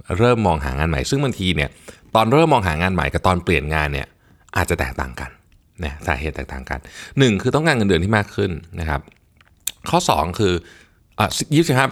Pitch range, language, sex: 80-115 Hz, Thai, male